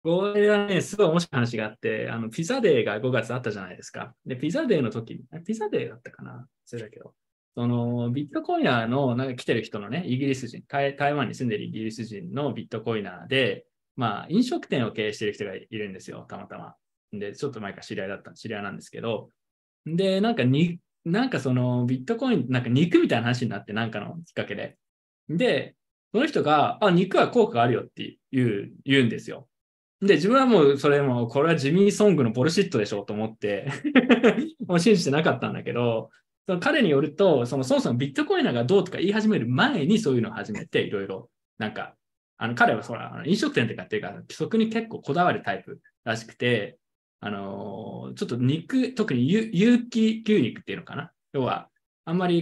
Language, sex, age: Japanese, male, 20-39